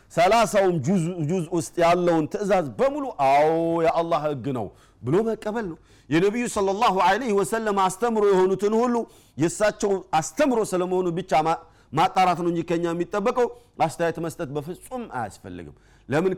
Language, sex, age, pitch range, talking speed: Amharic, male, 50-69, 160-205 Hz, 135 wpm